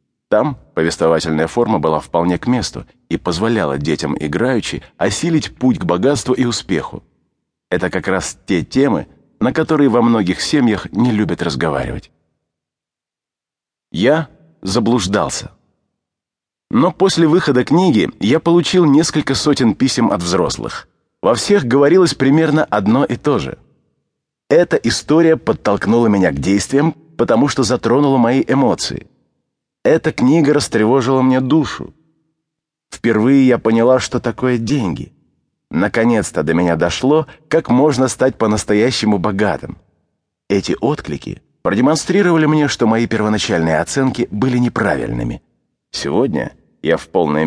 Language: English